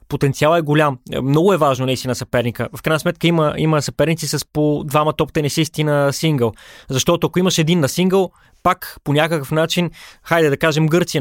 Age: 20-39